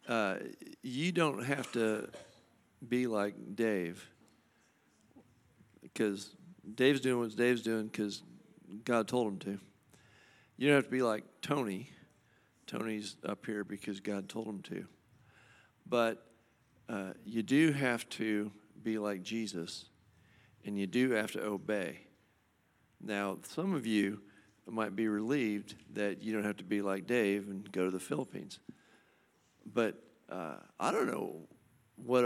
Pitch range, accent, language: 100-120 Hz, American, English